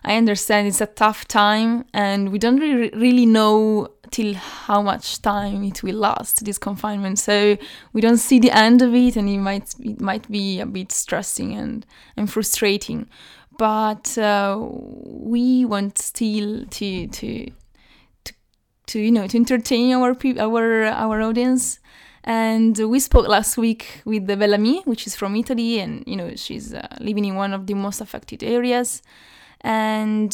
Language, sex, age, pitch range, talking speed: English, female, 20-39, 205-240 Hz, 170 wpm